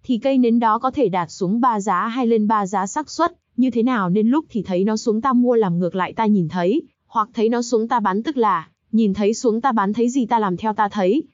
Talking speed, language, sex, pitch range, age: 280 wpm, Vietnamese, female, 205-250 Hz, 20-39